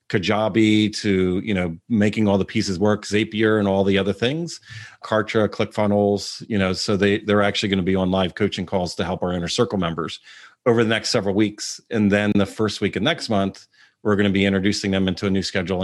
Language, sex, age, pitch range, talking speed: English, male, 40-59, 100-115 Hz, 220 wpm